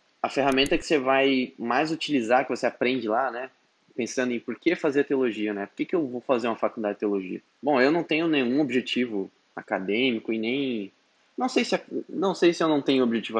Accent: Brazilian